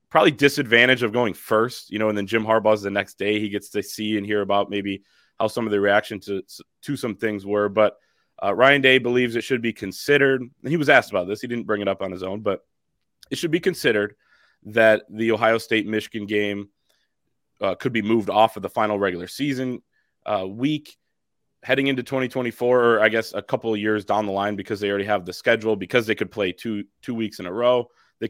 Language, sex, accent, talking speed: English, male, American, 225 wpm